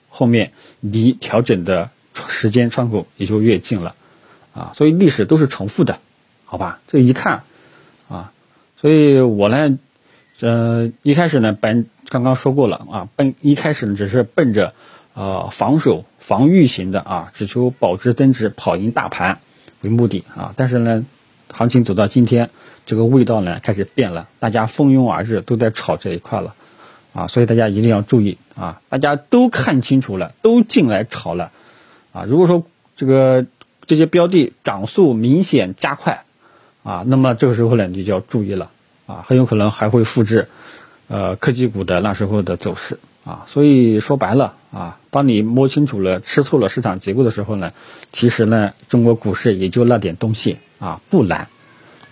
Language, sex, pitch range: Chinese, male, 105-135 Hz